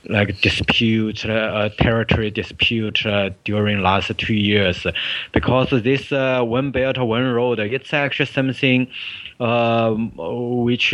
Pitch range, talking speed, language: 110-130 Hz, 125 wpm, English